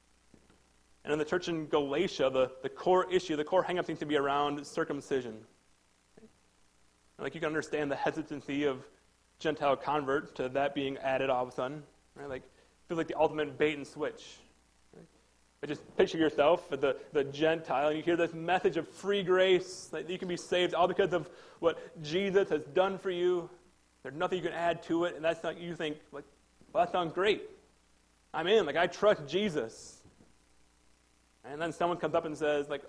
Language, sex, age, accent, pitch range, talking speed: English, male, 30-49, American, 140-185 Hz, 195 wpm